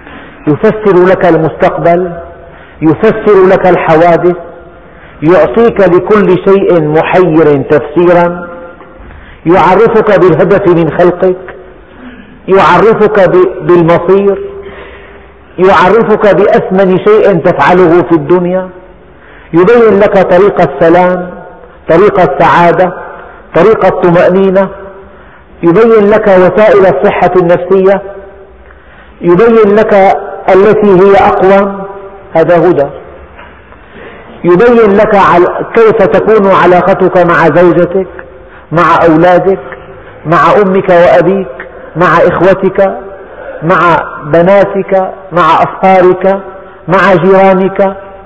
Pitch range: 175-195 Hz